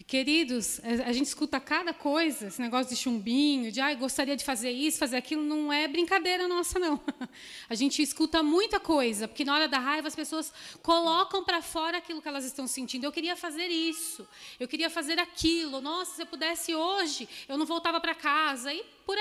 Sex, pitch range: female, 270-345 Hz